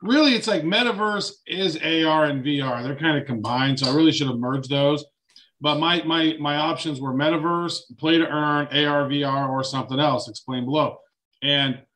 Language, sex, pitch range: English, male, 135-160 Hz